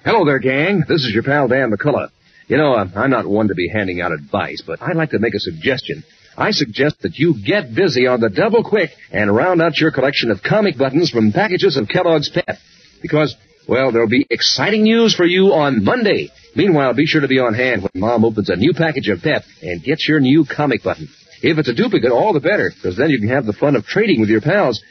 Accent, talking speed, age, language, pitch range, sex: American, 240 wpm, 50-69, English, 115-180 Hz, male